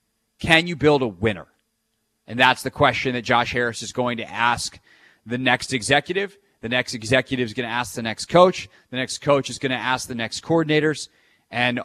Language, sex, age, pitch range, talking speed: English, male, 30-49, 110-140 Hz, 205 wpm